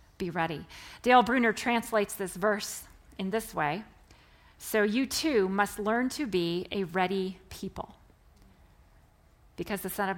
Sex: female